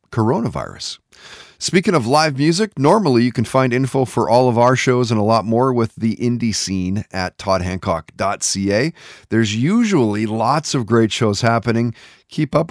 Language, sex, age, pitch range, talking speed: English, male, 40-59, 105-130 Hz, 160 wpm